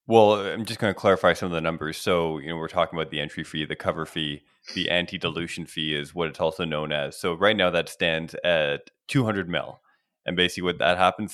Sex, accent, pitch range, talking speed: male, American, 80-95 Hz, 235 wpm